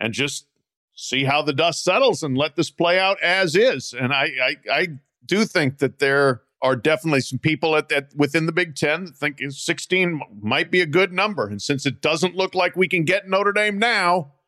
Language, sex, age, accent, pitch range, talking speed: English, male, 50-69, American, 140-180 Hz, 215 wpm